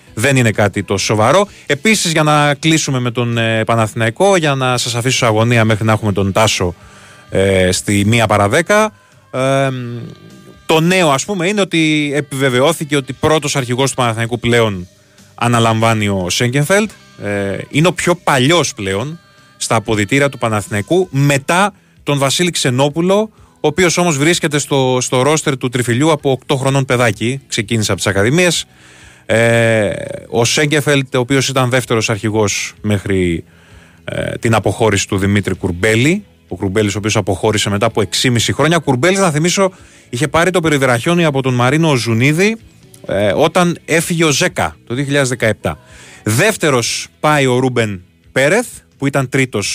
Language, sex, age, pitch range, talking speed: Greek, male, 20-39, 105-150 Hz, 150 wpm